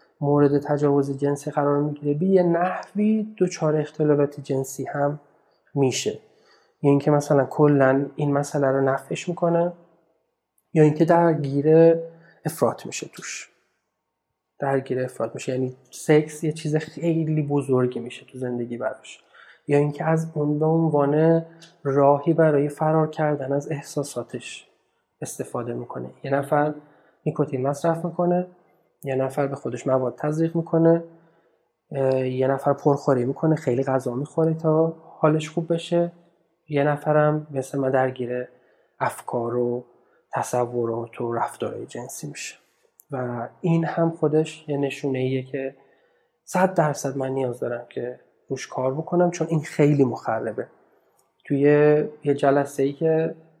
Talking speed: 130 wpm